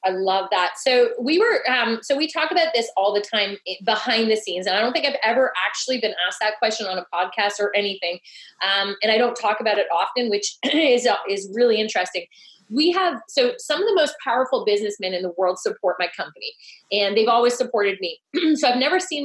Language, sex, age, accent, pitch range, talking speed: English, female, 30-49, American, 190-255 Hz, 225 wpm